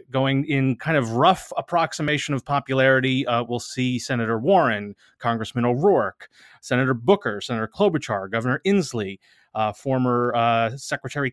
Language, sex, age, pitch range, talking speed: English, male, 30-49, 110-145 Hz, 130 wpm